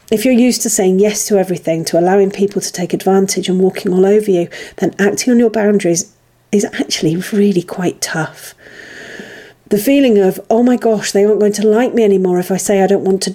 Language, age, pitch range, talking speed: English, 40-59, 180-215 Hz, 220 wpm